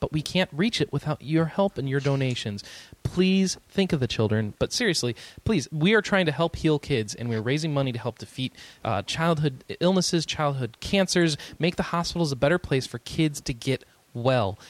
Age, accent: 30-49, American